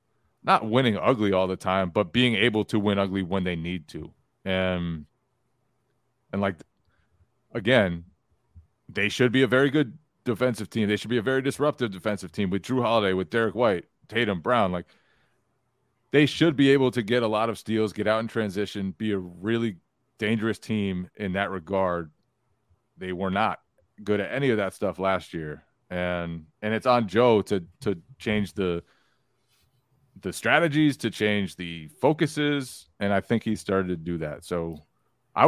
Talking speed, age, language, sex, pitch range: 175 wpm, 30-49, English, male, 90-120 Hz